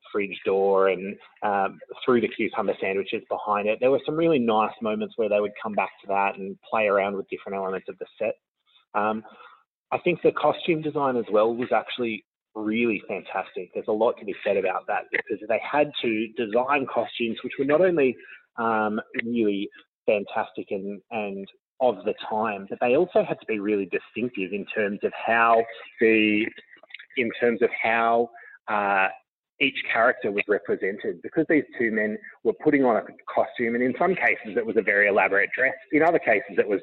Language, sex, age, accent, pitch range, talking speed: English, male, 20-39, Australian, 105-135 Hz, 190 wpm